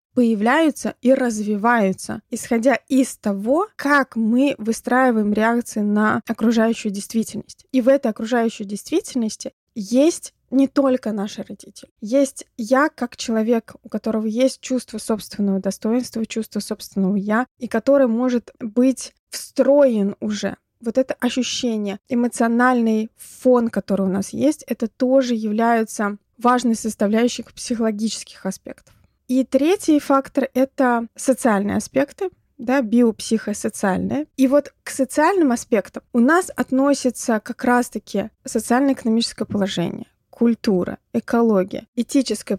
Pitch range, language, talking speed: 215-260 Hz, Russian, 115 wpm